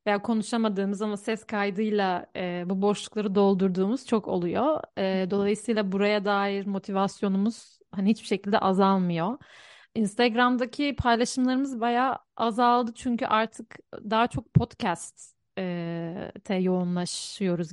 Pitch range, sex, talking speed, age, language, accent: 185-220 Hz, female, 105 wpm, 40-59, Turkish, native